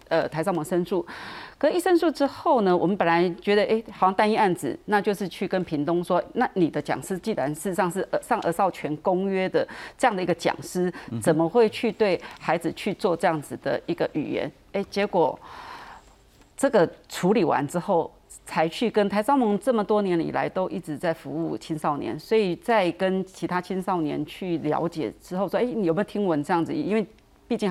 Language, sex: Chinese, female